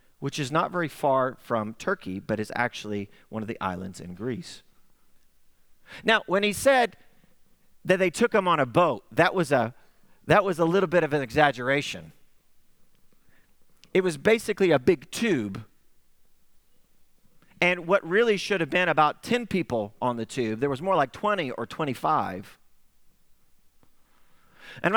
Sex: male